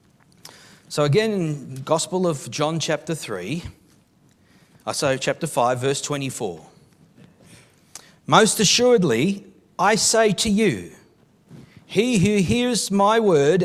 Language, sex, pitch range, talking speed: English, male, 170-215 Hz, 110 wpm